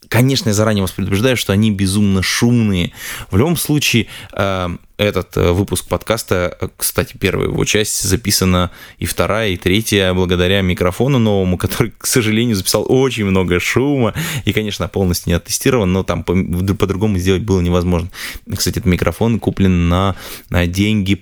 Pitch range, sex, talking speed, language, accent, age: 90-105 Hz, male, 145 wpm, Russian, native, 20-39